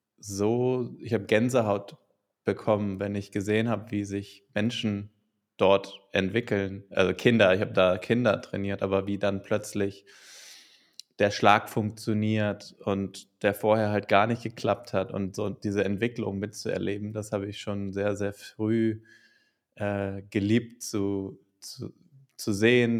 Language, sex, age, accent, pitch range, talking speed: German, male, 20-39, German, 100-115 Hz, 140 wpm